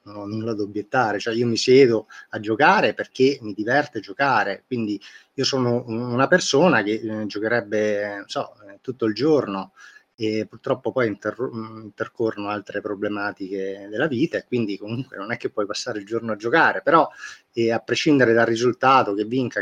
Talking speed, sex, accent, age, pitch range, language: 175 wpm, male, native, 30-49, 105-120 Hz, Italian